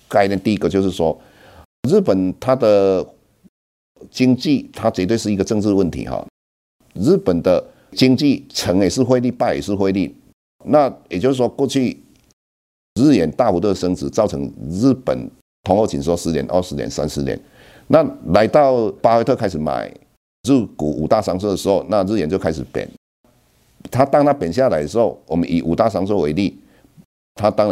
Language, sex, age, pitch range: Chinese, male, 50-69, 85-125 Hz